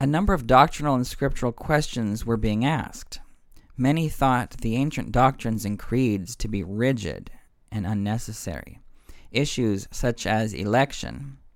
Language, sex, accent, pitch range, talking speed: English, male, American, 105-130 Hz, 135 wpm